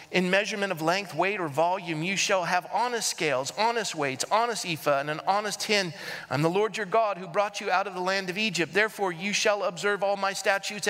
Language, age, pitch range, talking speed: English, 40-59, 170-220 Hz, 225 wpm